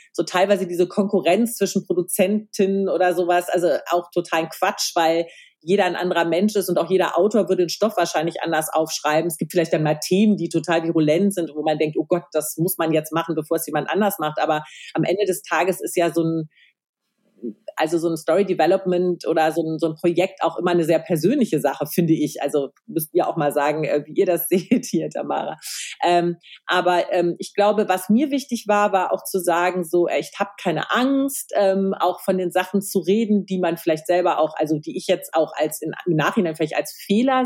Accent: German